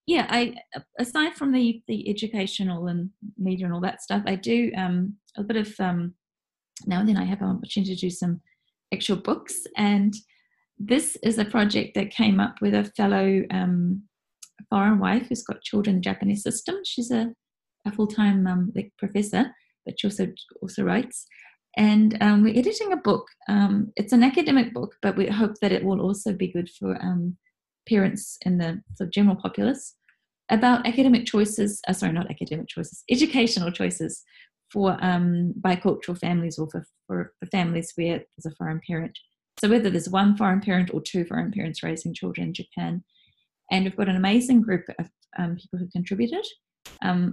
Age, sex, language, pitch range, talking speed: 20-39, female, English, 180-220 Hz, 180 wpm